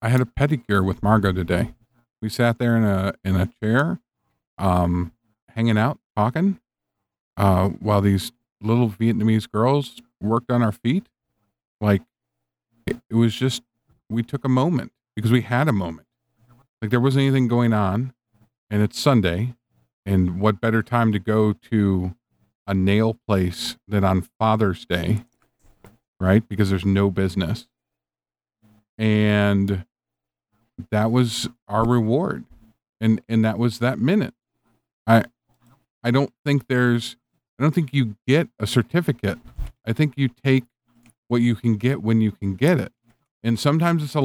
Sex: male